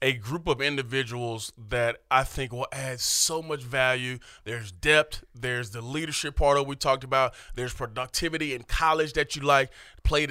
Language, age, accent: English, 30-49, American